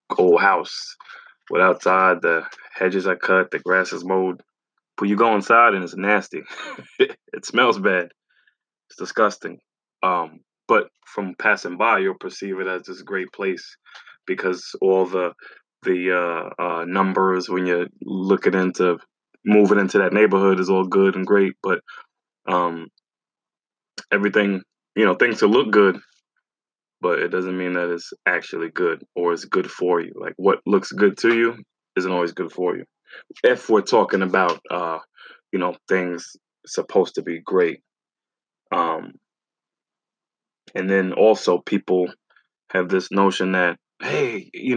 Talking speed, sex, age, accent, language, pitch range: 150 wpm, male, 20-39, American, English, 95-140 Hz